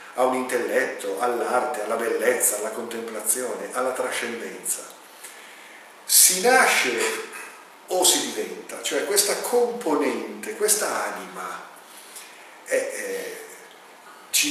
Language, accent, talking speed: Italian, native, 85 wpm